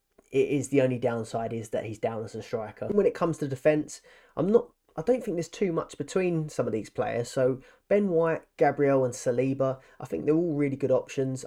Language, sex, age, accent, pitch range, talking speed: English, male, 20-39, British, 125-160 Hz, 230 wpm